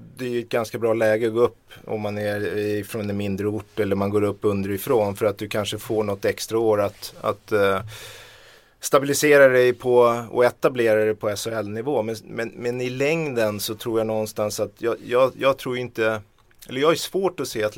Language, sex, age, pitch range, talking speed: Swedish, male, 30-49, 105-120 Hz, 210 wpm